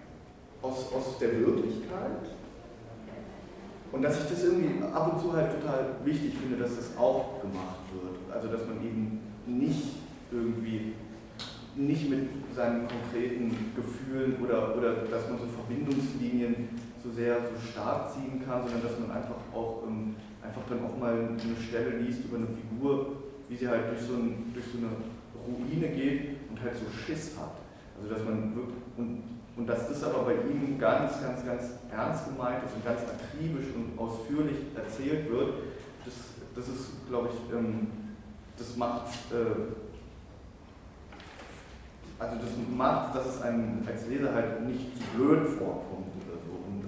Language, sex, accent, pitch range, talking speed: German, male, German, 110-125 Hz, 150 wpm